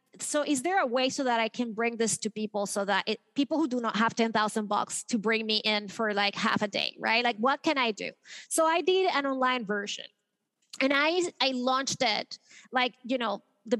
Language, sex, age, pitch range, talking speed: English, female, 30-49, 210-270 Hz, 225 wpm